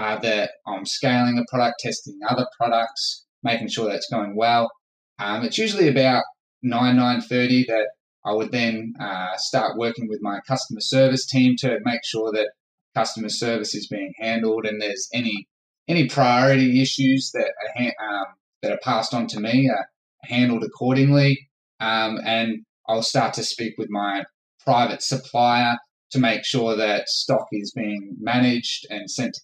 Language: English